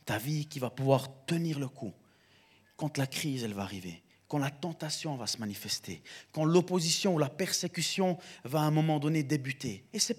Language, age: French, 40-59